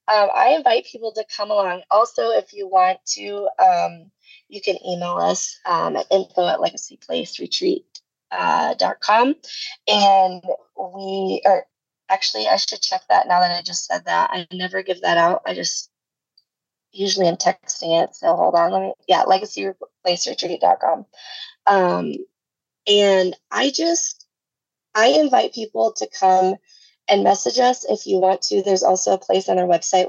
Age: 20-39